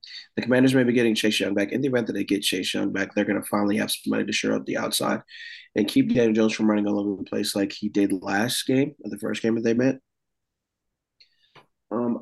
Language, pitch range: English, 100-120 Hz